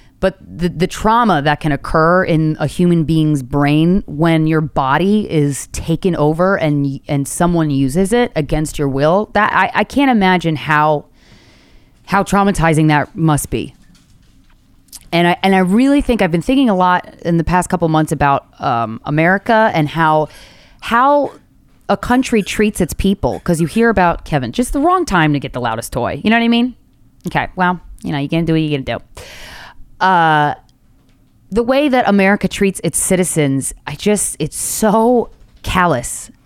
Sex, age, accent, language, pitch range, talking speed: female, 20-39, American, English, 145-195 Hz, 180 wpm